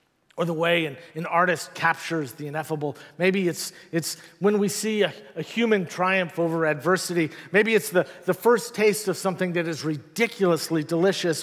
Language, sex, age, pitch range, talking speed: English, male, 50-69, 155-190 Hz, 170 wpm